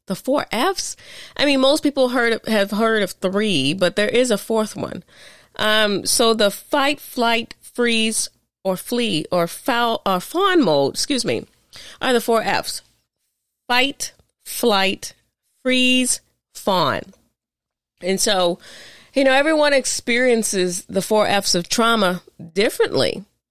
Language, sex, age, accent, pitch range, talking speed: English, female, 30-49, American, 170-240 Hz, 135 wpm